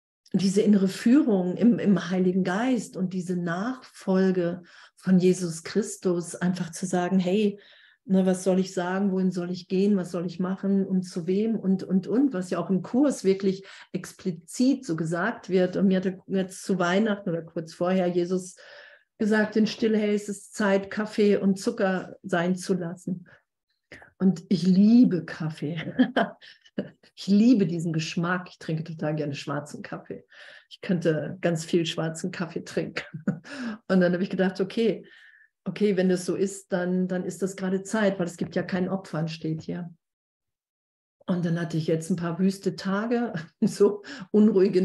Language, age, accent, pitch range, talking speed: German, 50-69, German, 175-205 Hz, 165 wpm